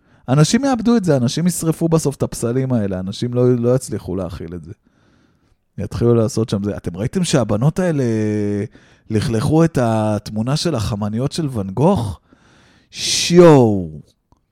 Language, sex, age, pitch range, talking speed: Hebrew, male, 20-39, 105-160 Hz, 140 wpm